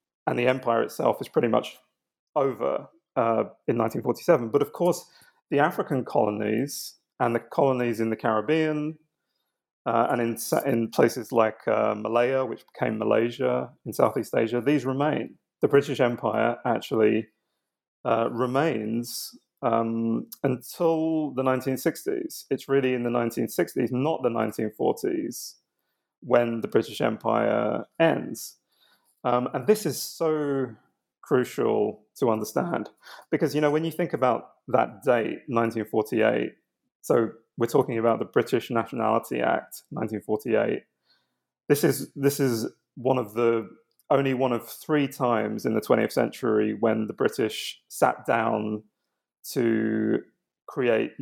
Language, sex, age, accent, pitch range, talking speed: English, male, 30-49, British, 115-145 Hz, 130 wpm